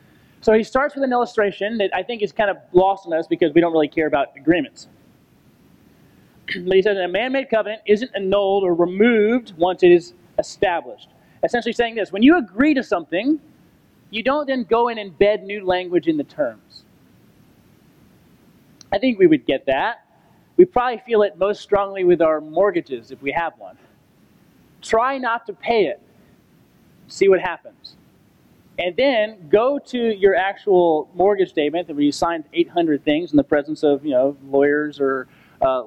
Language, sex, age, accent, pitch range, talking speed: English, male, 30-49, American, 170-235 Hz, 175 wpm